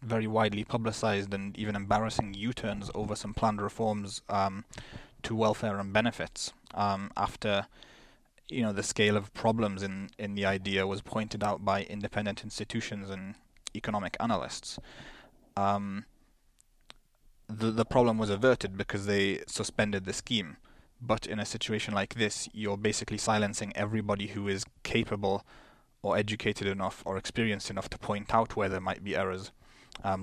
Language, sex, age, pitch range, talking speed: English, male, 20-39, 100-110 Hz, 150 wpm